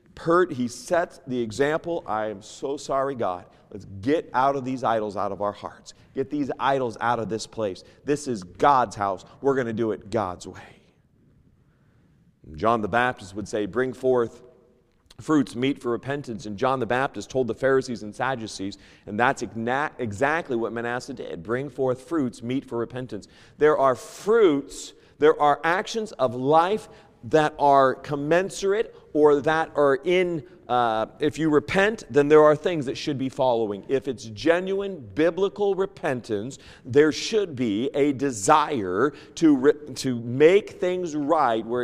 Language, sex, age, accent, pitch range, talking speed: English, male, 40-59, American, 120-170 Hz, 160 wpm